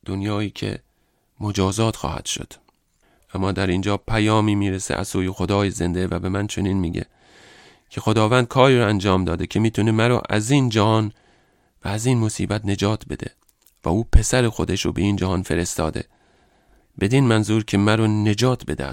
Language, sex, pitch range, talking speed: English, male, 90-110 Hz, 170 wpm